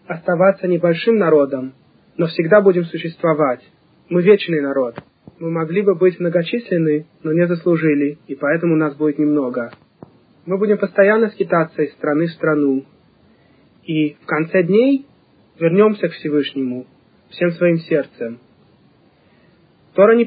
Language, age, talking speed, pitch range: Russian, 20-39, 125 wpm, 145-175 Hz